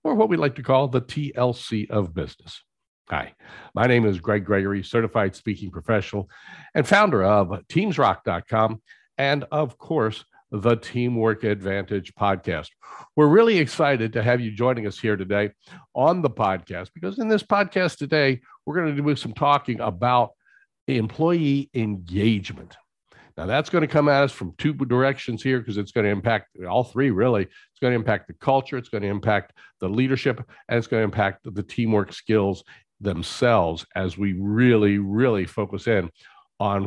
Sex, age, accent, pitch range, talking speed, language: male, 60-79, American, 105-150 Hz, 170 wpm, English